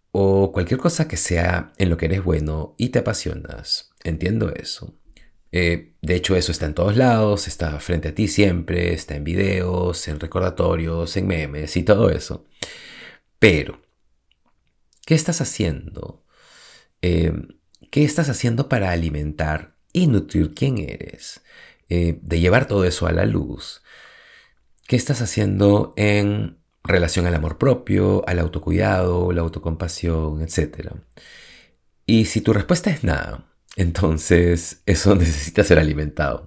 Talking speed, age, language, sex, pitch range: 140 wpm, 30-49, Spanish, male, 80-100 Hz